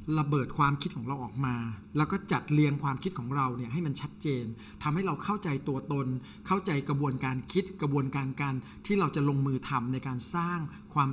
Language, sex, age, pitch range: Thai, male, 60-79, 130-170 Hz